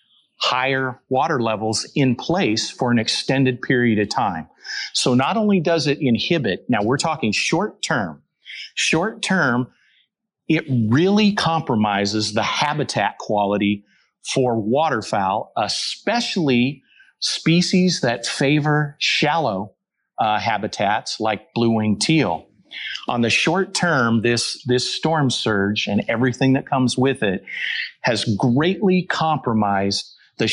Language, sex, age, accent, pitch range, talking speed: English, male, 40-59, American, 115-150 Hz, 120 wpm